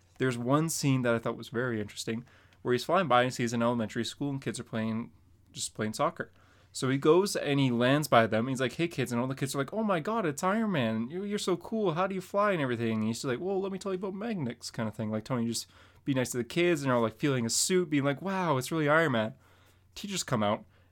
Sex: male